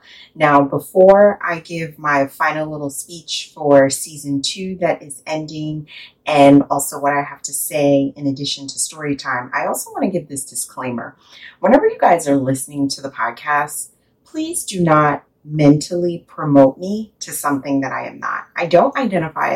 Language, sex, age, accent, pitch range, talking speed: English, female, 30-49, American, 140-180 Hz, 170 wpm